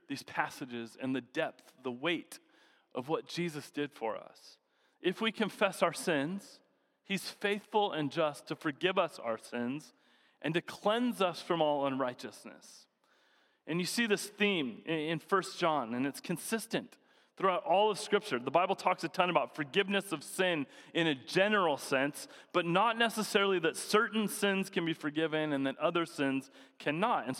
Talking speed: 170 wpm